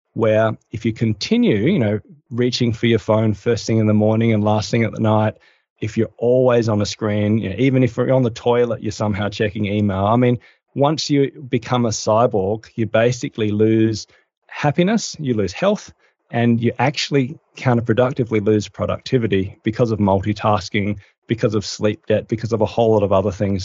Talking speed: 185 wpm